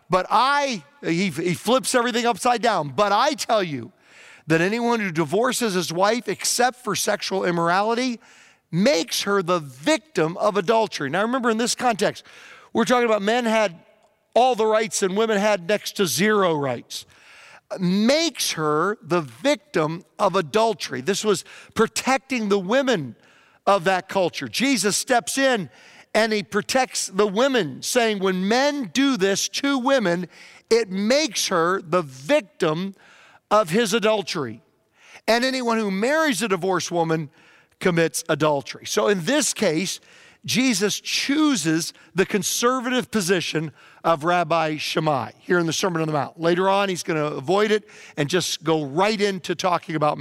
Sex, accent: male, American